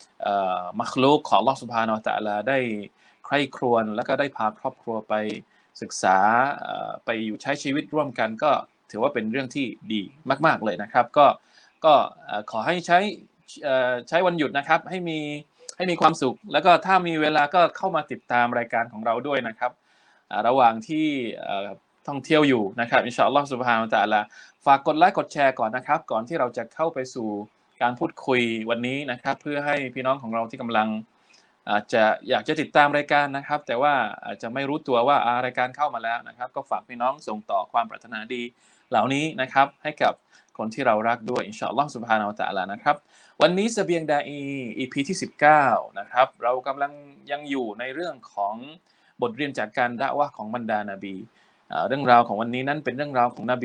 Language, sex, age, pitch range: Thai, male, 20-39, 115-145 Hz